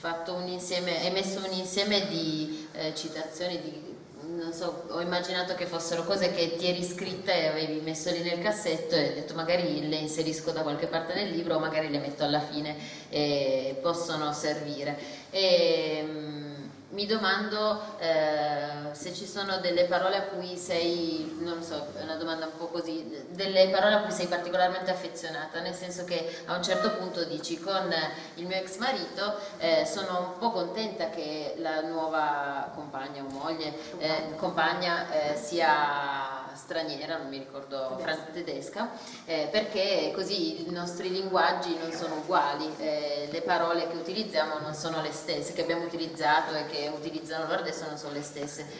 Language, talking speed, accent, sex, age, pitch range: Italian, 155 wpm, native, female, 30-49, 155-185 Hz